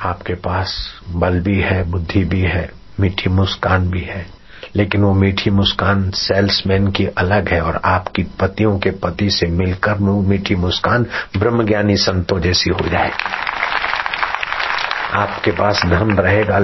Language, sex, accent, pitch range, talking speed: Hindi, male, native, 90-100 Hz, 140 wpm